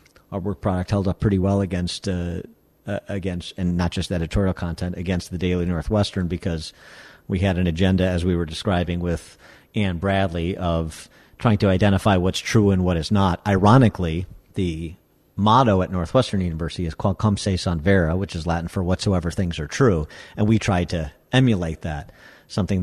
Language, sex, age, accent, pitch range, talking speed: English, male, 50-69, American, 85-100 Hz, 175 wpm